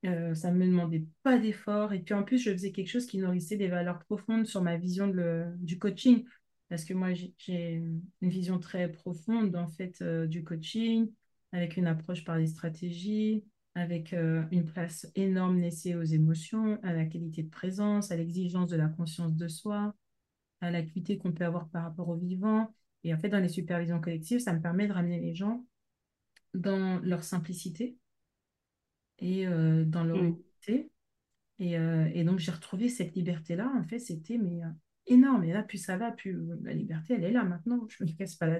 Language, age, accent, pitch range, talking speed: French, 30-49, French, 170-210 Hz, 195 wpm